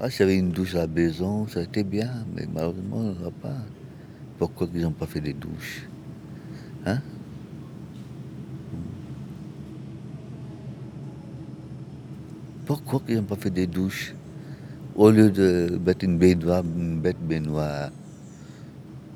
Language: French